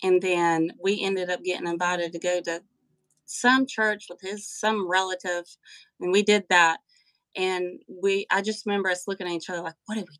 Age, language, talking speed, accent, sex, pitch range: 30-49, English, 200 wpm, American, female, 170-205 Hz